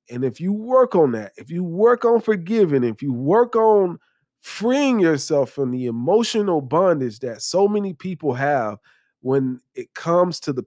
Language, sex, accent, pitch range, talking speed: English, male, American, 135-180 Hz, 175 wpm